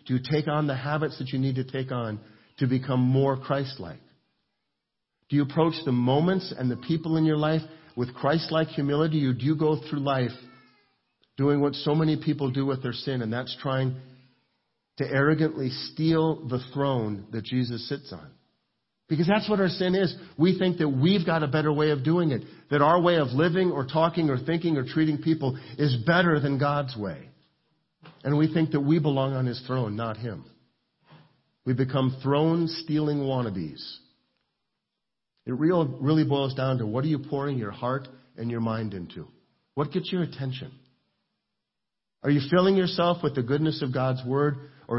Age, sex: 50-69, male